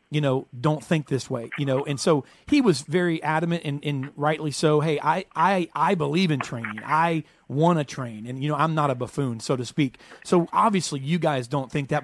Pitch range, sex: 140-170 Hz, male